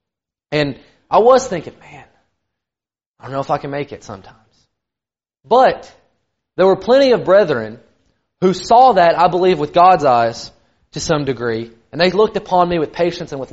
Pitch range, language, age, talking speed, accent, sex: 150-210 Hz, English, 30-49, 175 wpm, American, male